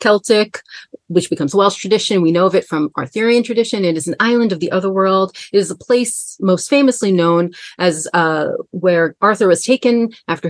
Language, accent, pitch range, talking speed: English, American, 155-200 Hz, 195 wpm